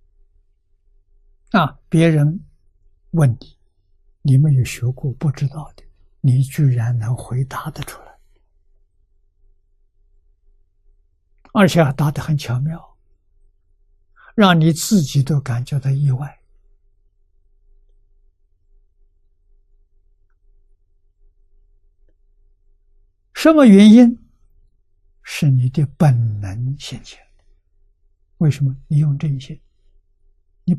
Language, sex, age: Chinese, male, 60-79